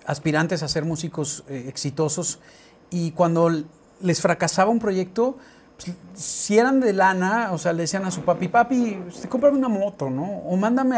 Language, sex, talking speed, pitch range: English, male, 175 wpm, 170-235 Hz